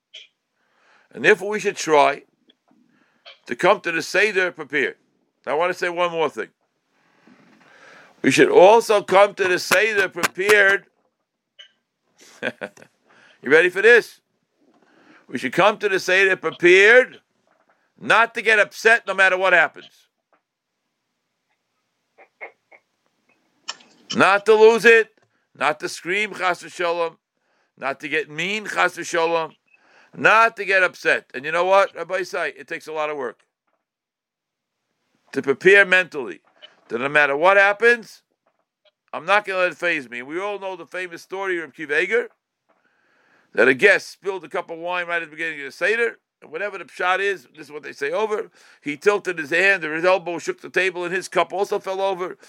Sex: male